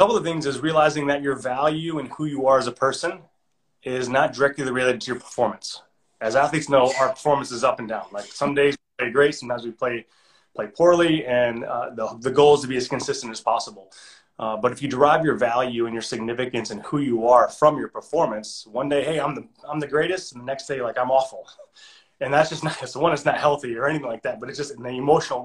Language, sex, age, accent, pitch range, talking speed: English, male, 30-49, American, 120-145 Hz, 250 wpm